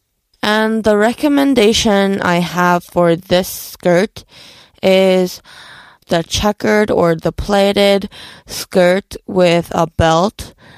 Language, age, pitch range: Korean, 20-39, 175-210 Hz